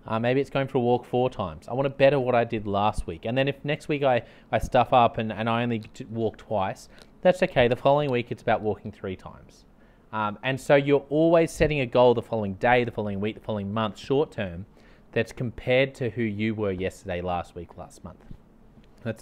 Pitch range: 105-135 Hz